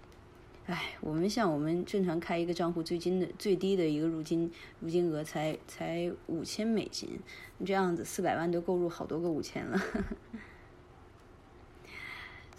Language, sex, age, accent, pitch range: Chinese, female, 20-39, native, 150-190 Hz